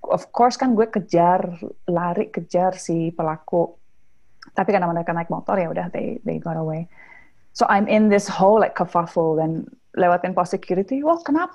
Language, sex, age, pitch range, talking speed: Indonesian, female, 30-49, 190-270 Hz, 160 wpm